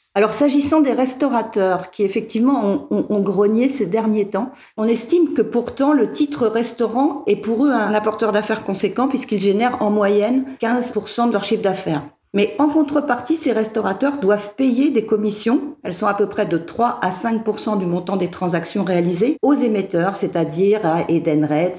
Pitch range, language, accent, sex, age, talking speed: 185-235 Hz, French, French, female, 50-69, 175 wpm